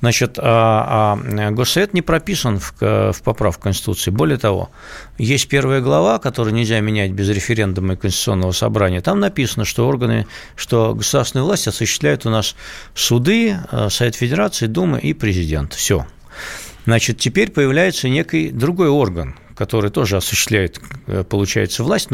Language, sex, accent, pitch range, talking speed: Russian, male, native, 100-130 Hz, 140 wpm